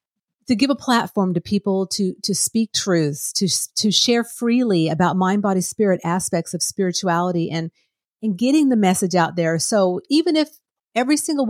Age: 50-69